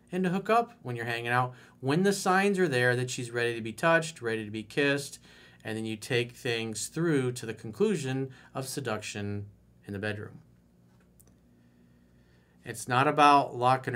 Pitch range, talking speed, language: 115-150 Hz, 175 wpm, English